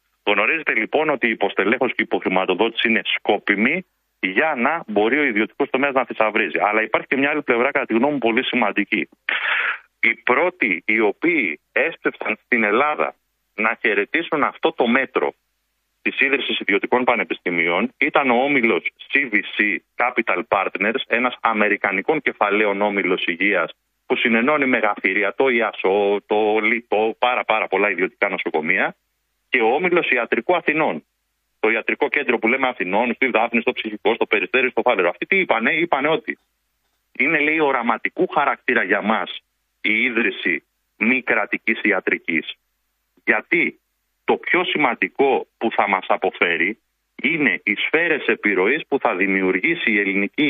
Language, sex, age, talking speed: Greek, male, 40-59, 135 wpm